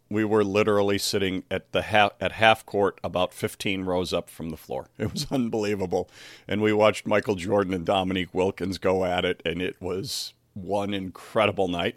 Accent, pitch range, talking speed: American, 95-115 Hz, 185 wpm